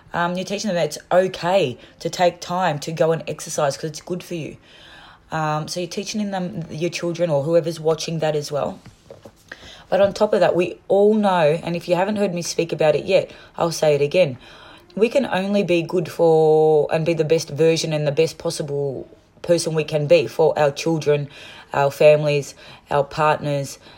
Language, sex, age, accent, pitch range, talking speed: English, female, 20-39, Australian, 150-185 Hz, 200 wpm